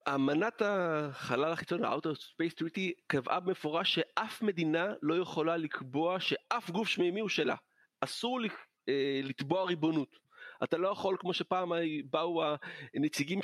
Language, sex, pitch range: Hebrew, male, 155-200 Hz